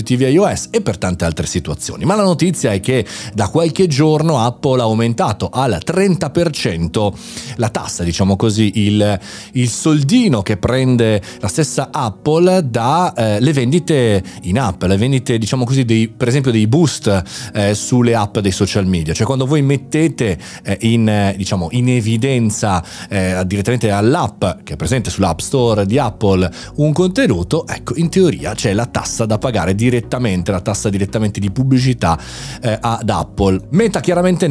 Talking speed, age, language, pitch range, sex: 160 wpm, 30-49, Italian, 105-145 Hz, male